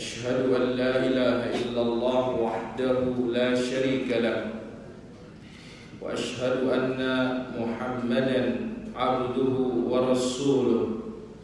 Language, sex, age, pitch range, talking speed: Indonesian, male, 40-59, 125-135 Hz, 75 wpm